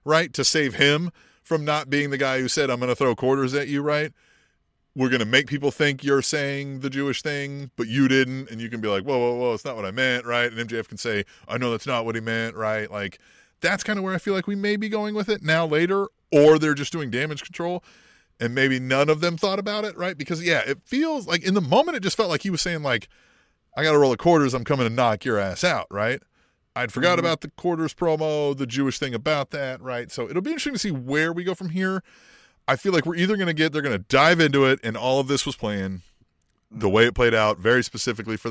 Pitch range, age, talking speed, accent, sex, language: 120-165 Hz, 30-49, 260 wpm, American, male, English